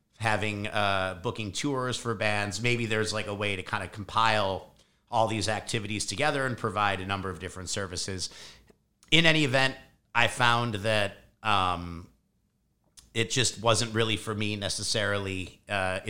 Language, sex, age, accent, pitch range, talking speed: English, male, 50-69, American, 95-115 Hz, 155 wpm